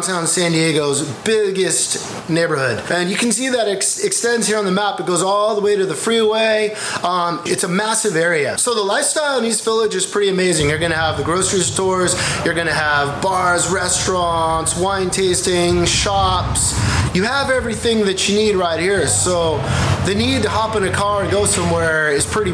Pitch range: 160-210 Hz